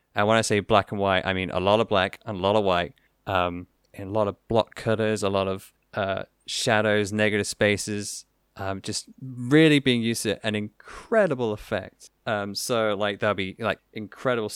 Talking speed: 200 wpm